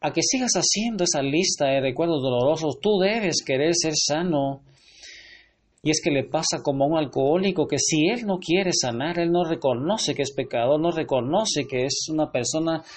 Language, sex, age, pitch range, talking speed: Spanish, male, 40-59, 140-185 Hz, 190 wpm